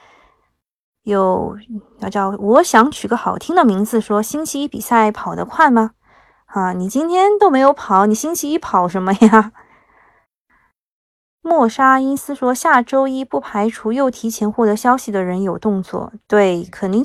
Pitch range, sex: 205-265 Hz, female